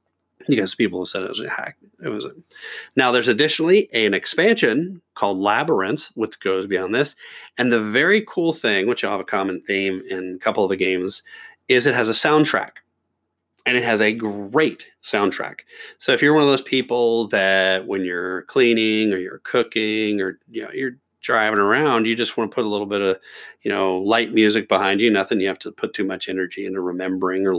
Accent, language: American, English